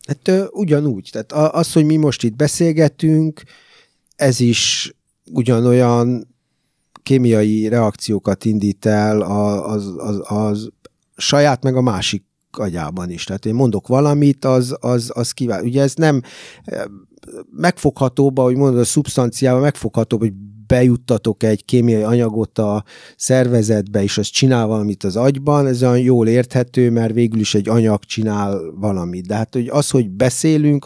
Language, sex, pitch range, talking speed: Hungarian, male, 105-135 Hz, 140 wpm